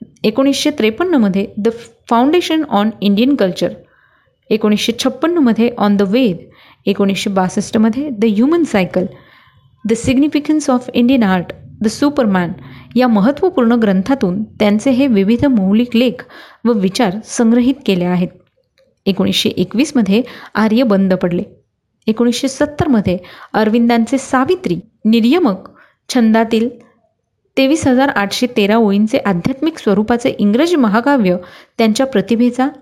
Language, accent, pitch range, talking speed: Marathi, native, 200-255 Hz, 110 wpm